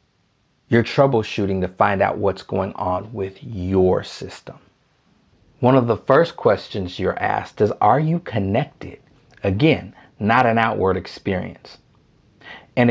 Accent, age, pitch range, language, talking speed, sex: American, 40-59, 100-120 Hz, English, 130 wpm, male